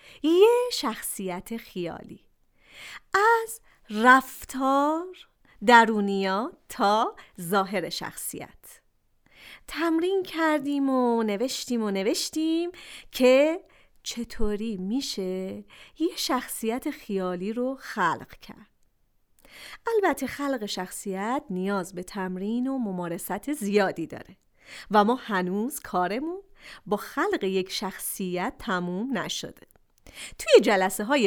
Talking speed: 90 wpm